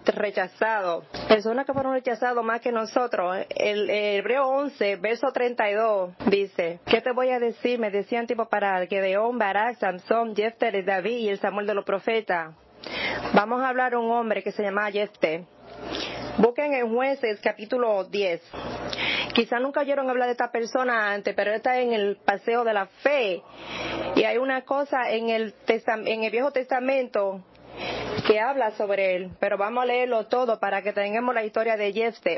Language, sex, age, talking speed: English, female, 30-49, 170 wpm